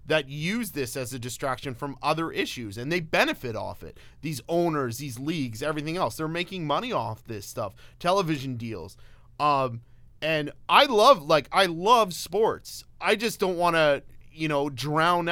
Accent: American